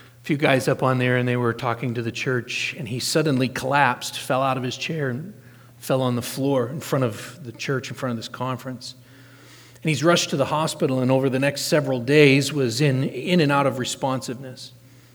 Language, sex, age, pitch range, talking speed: English, male, 40-59, 125-160 Hz, 220 wpm